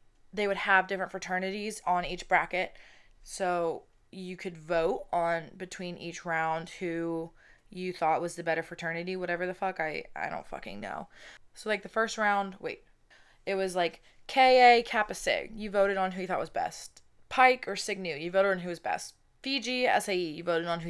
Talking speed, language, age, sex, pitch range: 190 wpm, English, 20-39, female, 170-210 Hz